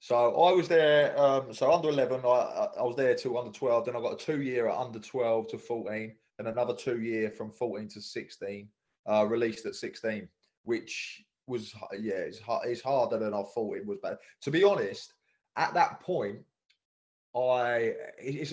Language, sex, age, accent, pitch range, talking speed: English, male, 20-39, British, 110-165 Hz, 190 wpm